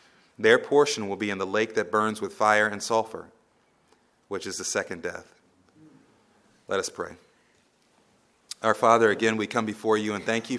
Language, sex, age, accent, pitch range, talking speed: English, male, 30-49, American, 105-140 Hz, 175 wpm